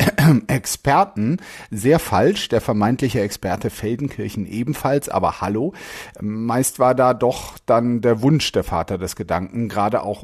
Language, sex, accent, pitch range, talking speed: German, male, German, 110-145 Hz, 135 wpm